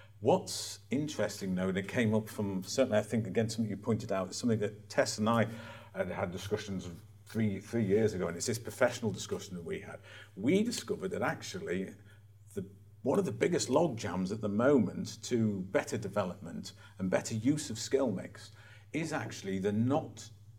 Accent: British